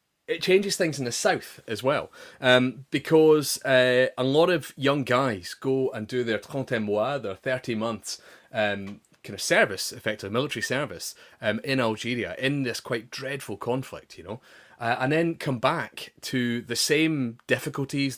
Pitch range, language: 110-135 Hz, English